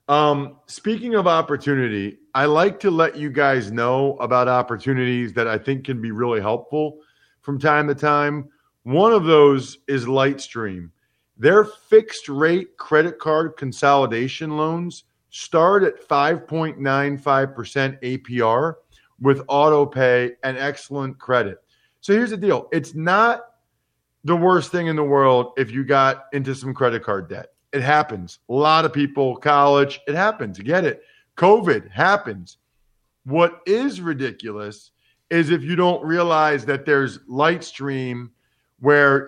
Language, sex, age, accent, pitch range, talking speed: English, male, 40-59, American, 135-170 Hz, 140 wpm